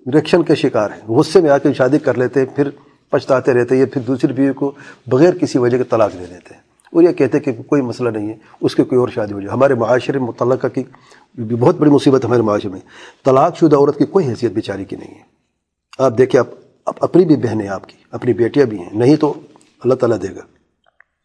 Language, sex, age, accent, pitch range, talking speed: English, male, 40-59, Indian, 120-145 Hz, 160 wpm